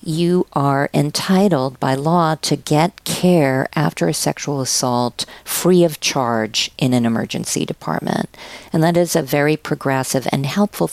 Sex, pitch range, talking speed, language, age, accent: female, 130-170 Hz, 150 wpm, English, 50-69, American